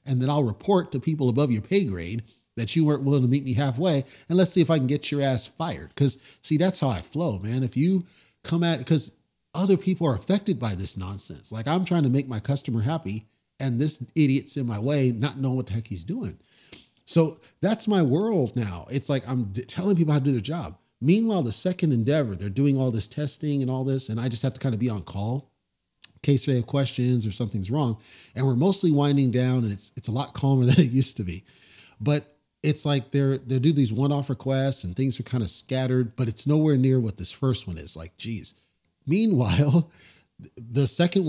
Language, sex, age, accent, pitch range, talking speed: English, male, 40-59, American, 115-145 Hz, 230 wpm